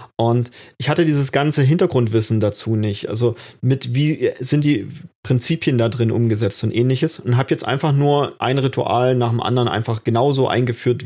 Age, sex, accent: 30-49, male, German